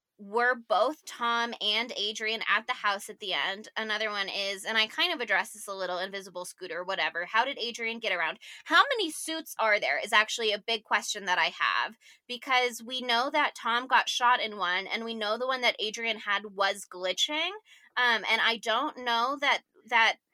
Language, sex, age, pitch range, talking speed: English, female, 10-29, 205-275 Hz, 205 wpm